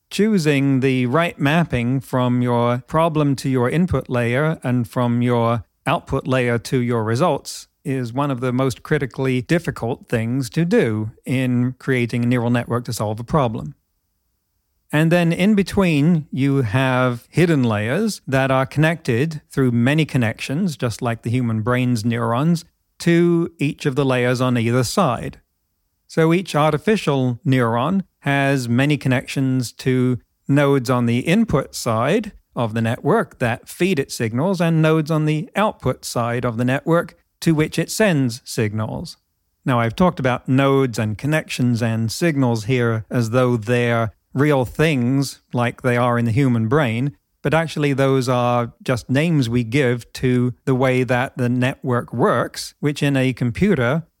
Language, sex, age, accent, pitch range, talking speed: English, male, 40-59, American, 120-150 Hz, 155 wpm